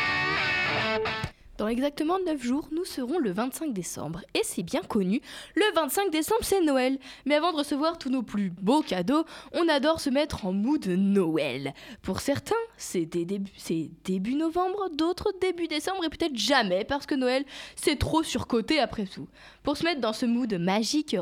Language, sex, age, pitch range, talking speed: French, female, 20-39, 200-310 Hz, 180 wpm